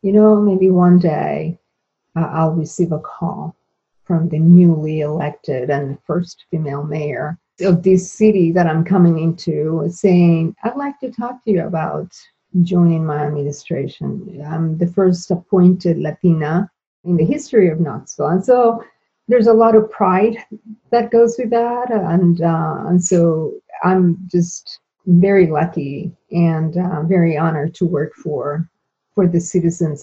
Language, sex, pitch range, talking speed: English, female, 165-195 Hz, 150 wpm